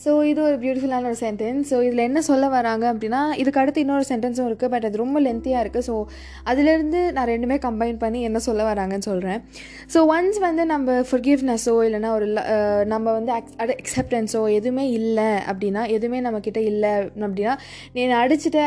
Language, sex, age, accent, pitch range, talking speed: Tamil, female, 20-39, native, 220-275 Hz, 165 wpm